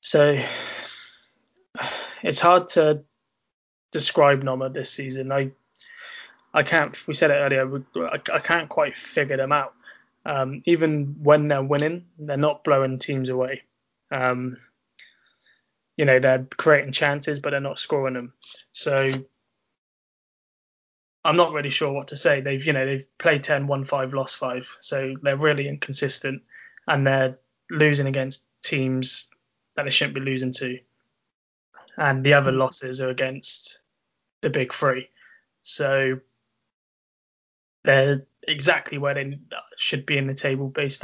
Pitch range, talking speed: 130-145 Hz, 140 wpm